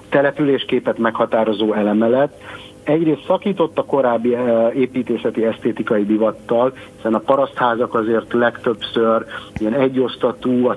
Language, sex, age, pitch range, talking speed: Hungarian, male, 60-79, 110-130 Hz, 100 wpm